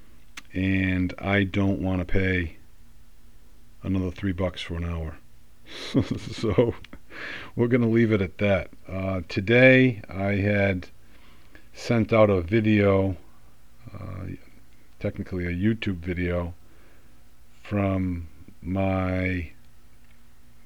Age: 50-69